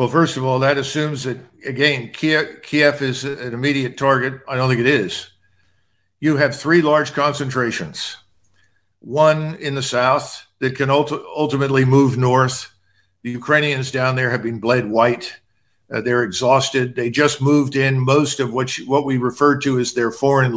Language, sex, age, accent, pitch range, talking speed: English, male, 50-69, American, 125-150 Hz, 170 wpm